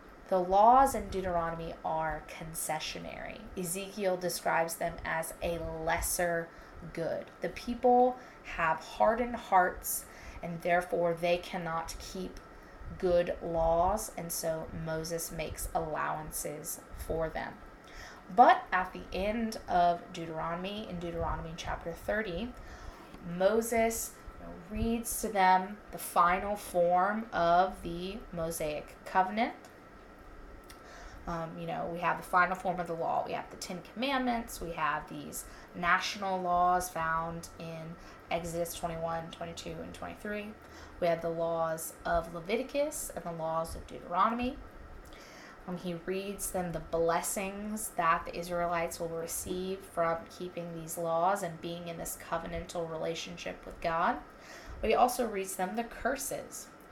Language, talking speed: English, 130 wpm